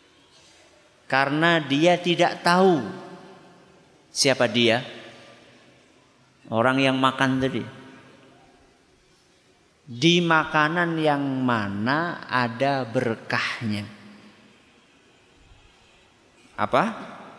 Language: Indonesian